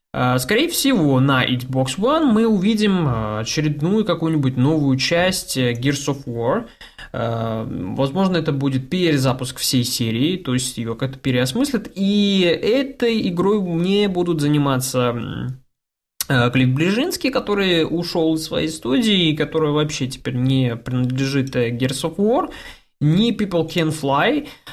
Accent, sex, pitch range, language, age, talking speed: native, male, 130-175 Hz, Russian, 20-39, 125 wpm